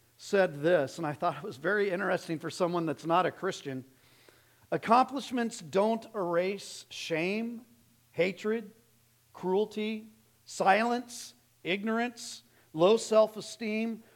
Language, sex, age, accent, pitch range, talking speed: English, male, 50-69, American, 130-190 Hz, 105 wpm